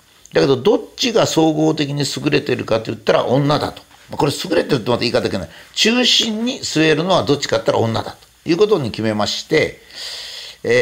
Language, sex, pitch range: Japanese, male, 120-190 Hz